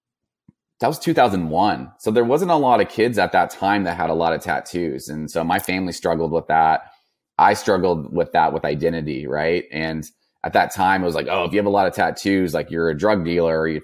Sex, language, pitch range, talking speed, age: male, English, 80-100 Hz, 240 wpm, 30-49